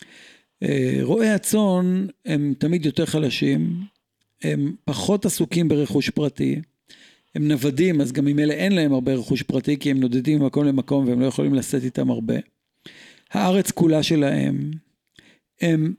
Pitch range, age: 135-180 Hz, 50-69